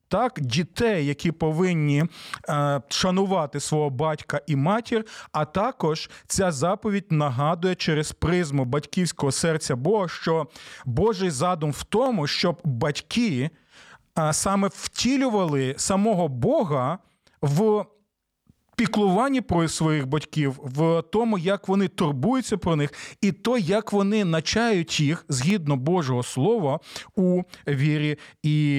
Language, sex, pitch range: Ukrainian, male, 145-195 Hz